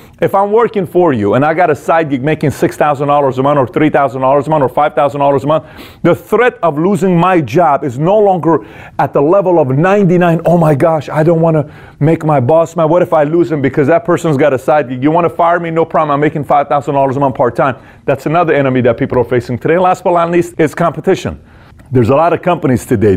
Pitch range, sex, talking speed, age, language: 135-175 Hz, male, 240 wpm, 30-49, English